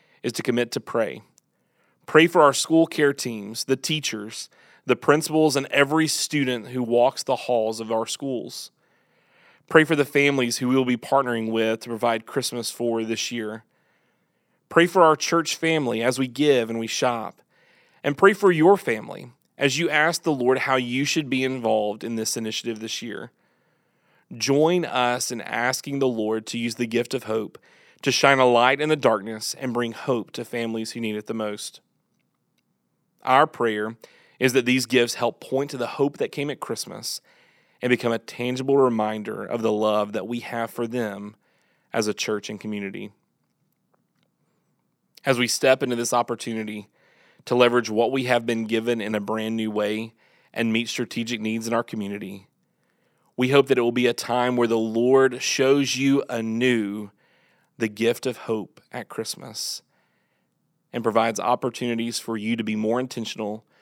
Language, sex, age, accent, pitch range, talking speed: English, male, 30-49, American, 110-135 Hz, 175 wpm